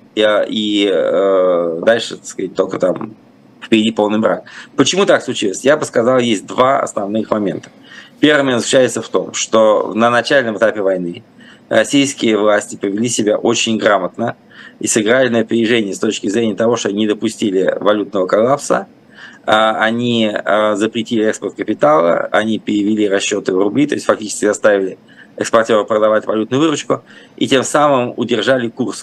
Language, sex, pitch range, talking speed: Russian, male, 105-120 Hz, 145 wpm